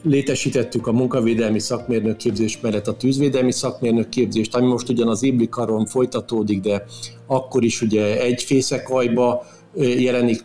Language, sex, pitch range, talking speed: Hungarian, male, 110-130 Hz, 130 wpm